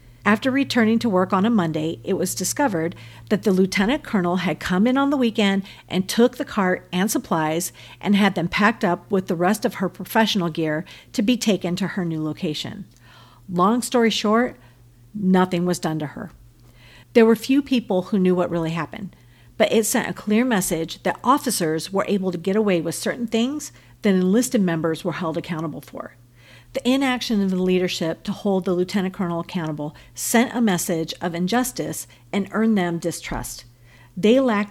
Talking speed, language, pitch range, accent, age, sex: 185 wpm, English, 165-220 Hz, American, 50-69, female